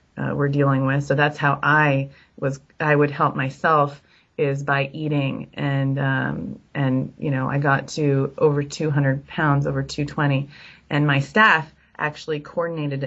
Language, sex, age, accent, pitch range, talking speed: English, female, 30-49, American, 140-160 Hz, 155 wpm